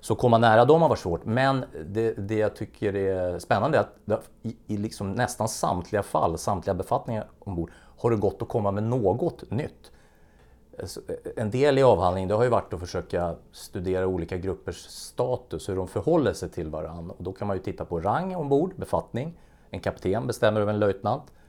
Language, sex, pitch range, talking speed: Swedish, male, 80-105 Hz, 195 wpm